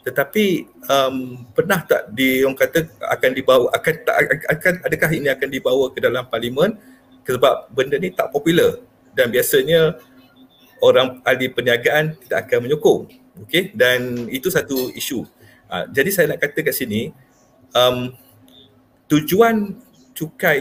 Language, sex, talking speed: Malay, male, 135 wpm